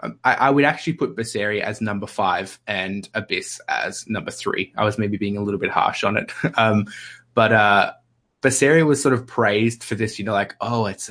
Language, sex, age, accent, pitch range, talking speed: English, male, 20-39, Australian, 100-120 Hz, 210 wpm